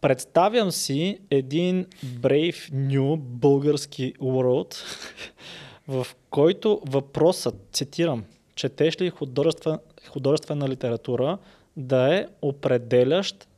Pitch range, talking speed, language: 130-160 Hz, 80 wpm, Bulgarian